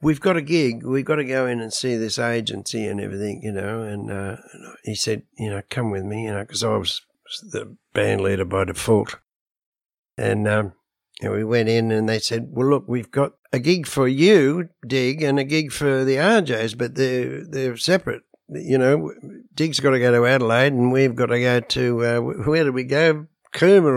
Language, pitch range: English, 105-135 Hz